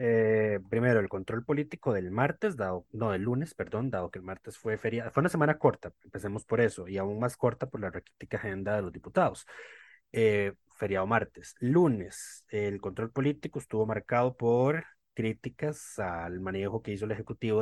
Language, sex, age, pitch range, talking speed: Spanish, male, 20-39, 100-125 Hz, 180 wpm